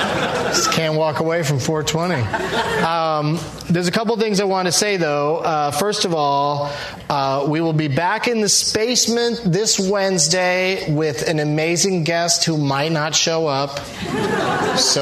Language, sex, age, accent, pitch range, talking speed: English, male, 30-49, American, 150-215 Hz, 160 wpm